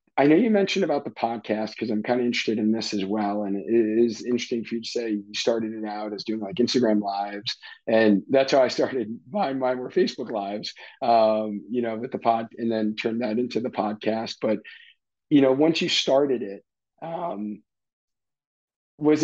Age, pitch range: 40-59, 110-130 Hz